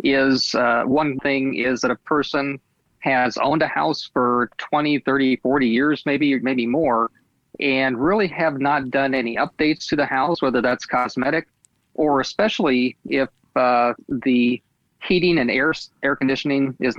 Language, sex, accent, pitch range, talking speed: English, male, American, 125-145 Hz, 155 wpm